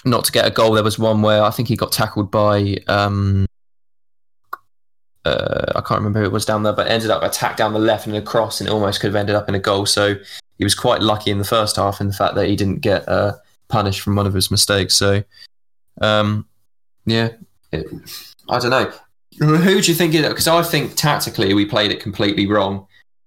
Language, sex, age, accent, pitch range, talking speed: English, male, 20-39, British, 105-130 Hz, 220 wpm